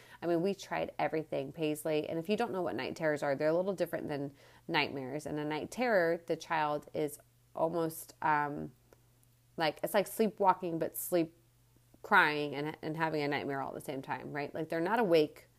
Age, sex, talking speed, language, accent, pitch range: 30-49, female, 200 wpm, English, American, 140-175 Hz